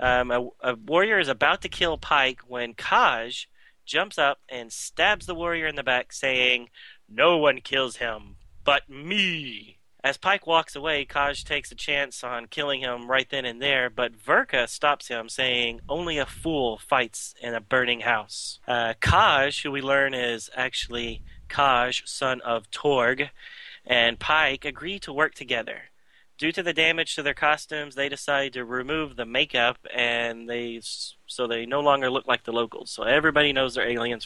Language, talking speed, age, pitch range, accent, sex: English, 175 wpm, 30-49, 120-140 Hz, American, male